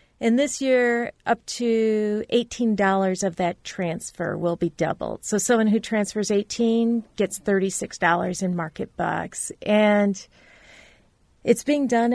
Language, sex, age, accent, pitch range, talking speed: English, female, 40-59, American, 185-230 Hz, 130 wpm